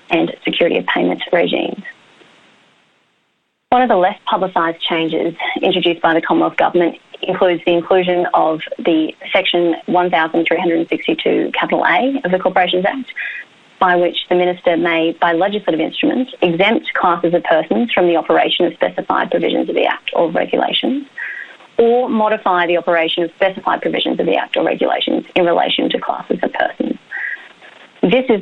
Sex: female